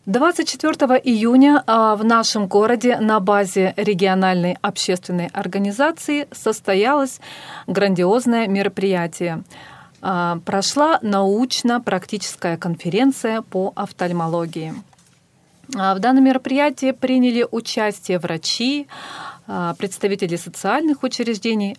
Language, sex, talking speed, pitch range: Russian, female, 75 wpm, 185-245 Hz